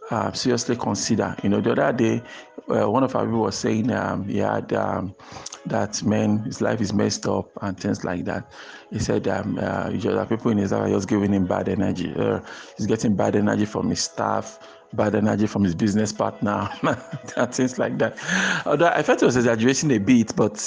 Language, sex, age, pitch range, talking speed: English, male, 50-69, 105-130 Hz, 210 wpm